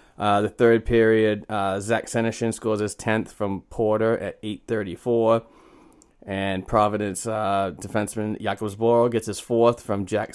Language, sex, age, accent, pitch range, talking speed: English, male, 30-49, American, 100-110 Hz, 145 wpm